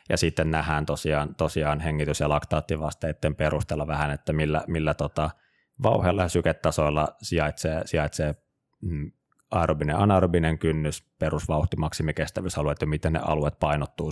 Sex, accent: male, native